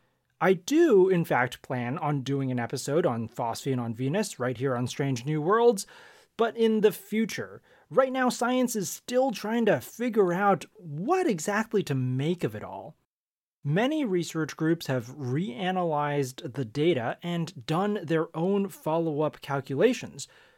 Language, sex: English, male